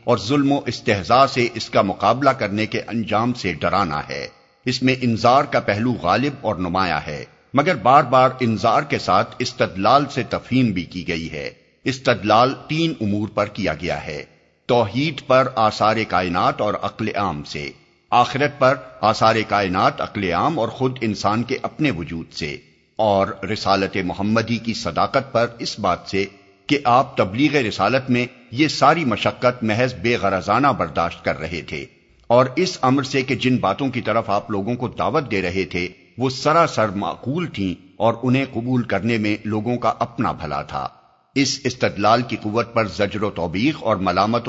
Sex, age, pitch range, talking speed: male, 50-69, 100-125 Hz, 175 wpm